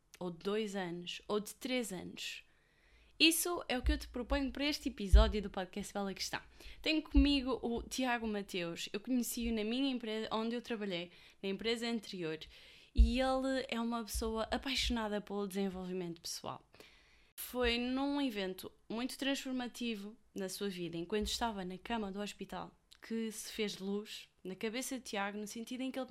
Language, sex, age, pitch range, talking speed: Portuguese, female, 20-39, 200-245 Hz, 170 wpm